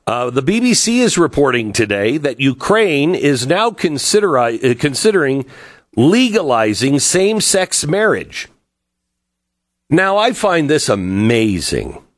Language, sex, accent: English, male, American